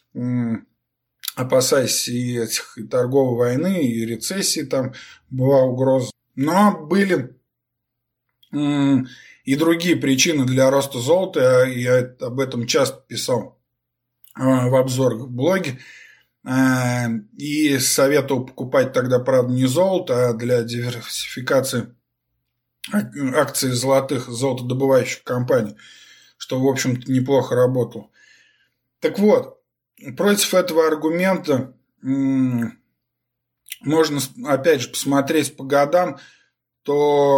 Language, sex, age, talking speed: Russian, male, 20-39, 95 wpm